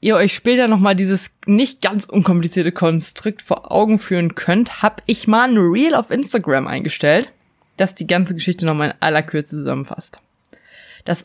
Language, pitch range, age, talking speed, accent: German, 165-215 Hz, 20-39, 165 wpm, German